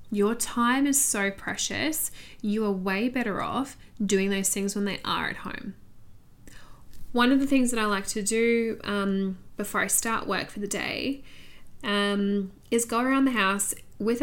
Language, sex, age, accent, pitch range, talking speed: English, female, 10-29, Australian, 200-240 Hz, 175 wpm